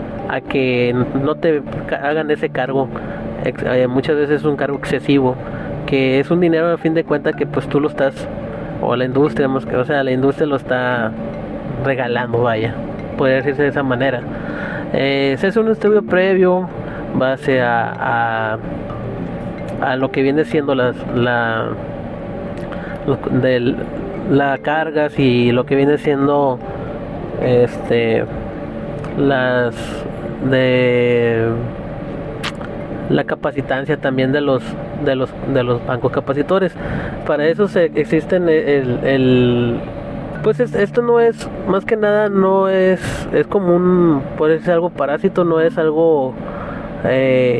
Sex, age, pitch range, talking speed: male, 30-49, 130-165 Hz, 140 wpm